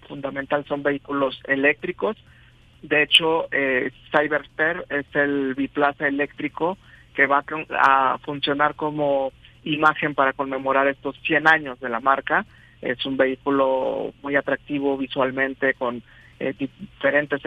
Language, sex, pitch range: Spanish, male, 135-155 Hz